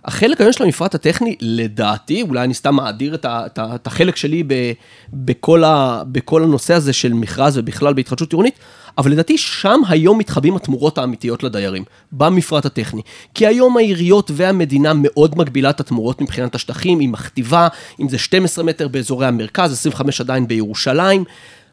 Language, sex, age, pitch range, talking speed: Hebrew, male, 30-49, 125-180 Hz, 150 wpm